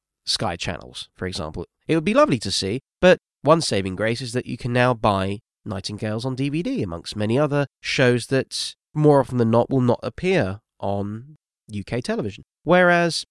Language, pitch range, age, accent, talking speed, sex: English, 105-155 Hz, 20-39, British, 175 wpm, male